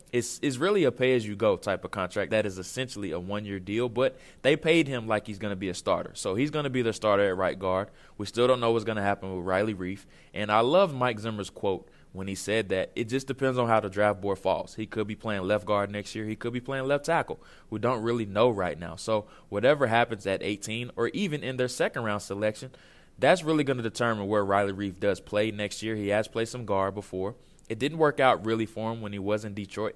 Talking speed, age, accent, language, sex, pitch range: 250 wpm, 20-39, American, English, male, 100-120 Hz